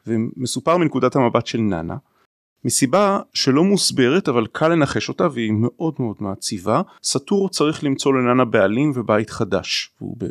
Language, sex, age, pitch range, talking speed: Hebrew, male, 30-49, 115-150 Hz, 145 wpm